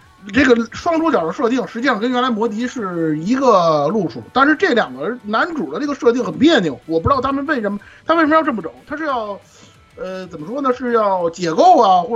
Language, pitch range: Chinese, 155-245 Hz